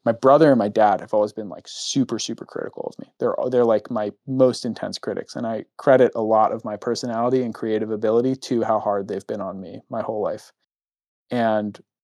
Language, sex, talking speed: English, male, 215 wpm